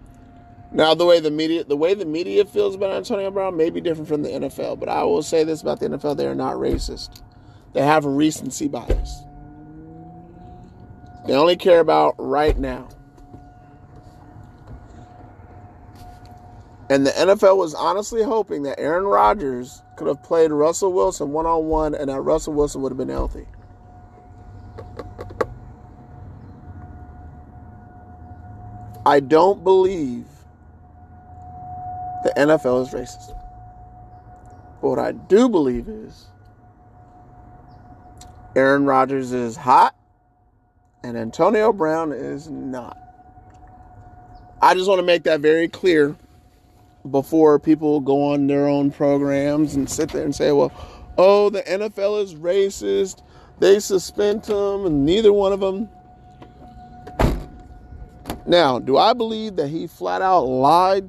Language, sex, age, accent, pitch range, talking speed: English, male, 30-49, American, 105-160 Hz, 130 wpm